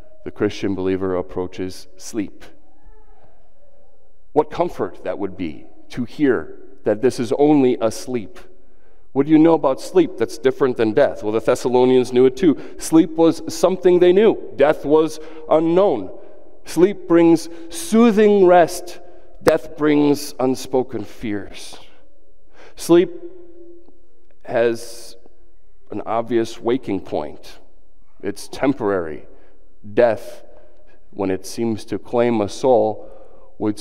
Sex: male